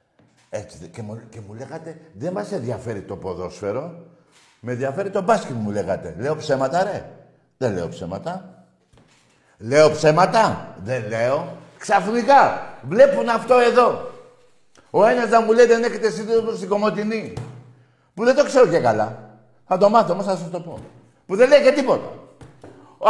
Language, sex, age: Greek, male, 60-79